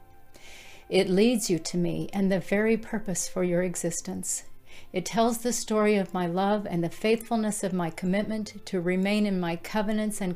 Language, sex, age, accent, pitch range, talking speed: English, female, 50-69, American, 175-210 Hz, 180 wpm